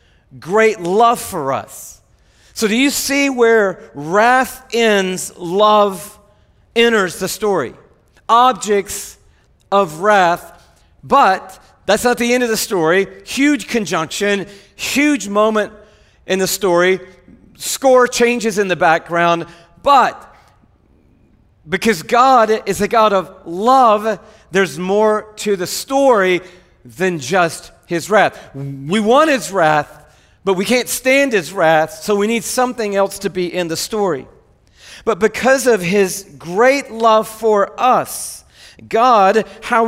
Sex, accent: male, American